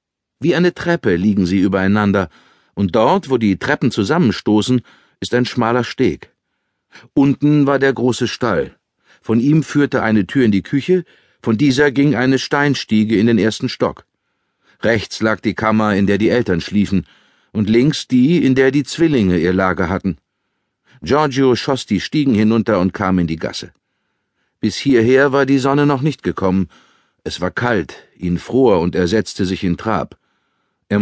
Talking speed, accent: 170 wpm, German